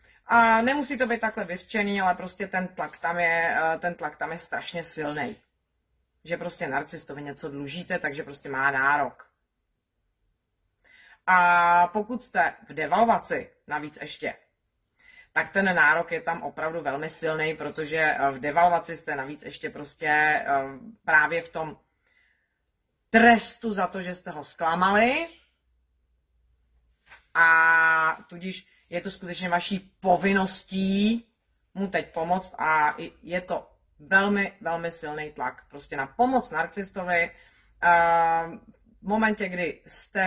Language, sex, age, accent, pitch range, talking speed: Czech, female, 30-49, native, 145-190 Hz, 125 wpm